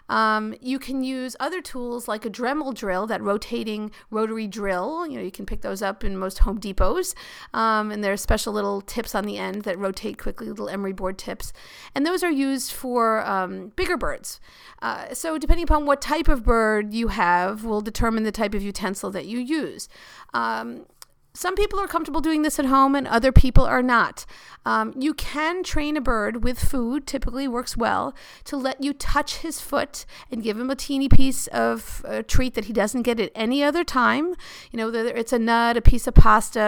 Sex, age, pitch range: female, 40-59, 210-275 Hz